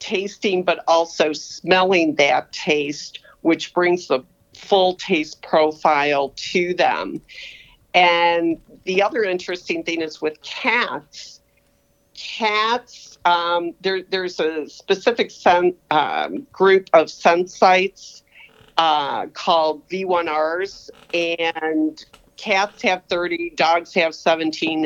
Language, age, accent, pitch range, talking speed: English, 50-69, American, 160-190 Hz, 105 wpm